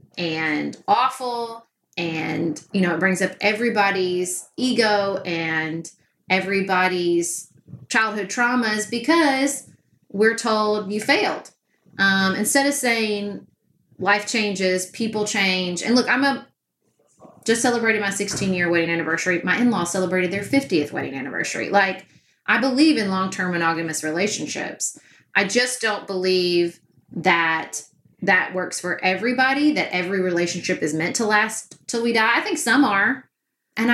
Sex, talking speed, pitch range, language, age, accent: female, 135 wpm, 175-225 Hz, English, 30-49, American